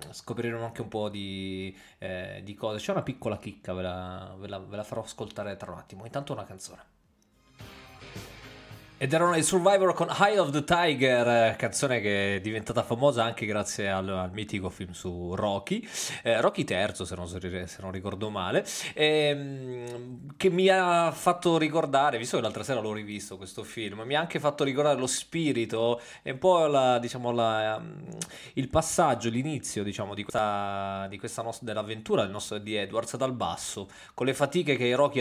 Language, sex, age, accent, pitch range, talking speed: Italian, male, 20-39, native, 105-140 Hz, 180 wpm